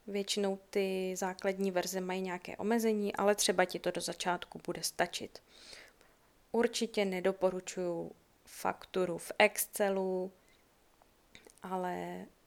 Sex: female